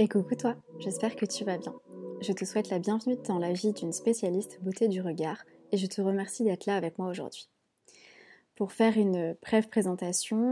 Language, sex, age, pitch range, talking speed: French, female, 20-39, 180-215 Hz, 200 wpm